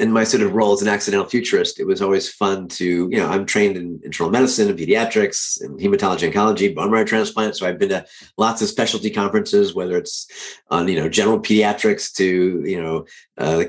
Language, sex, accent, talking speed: English, male, American, 215 wpm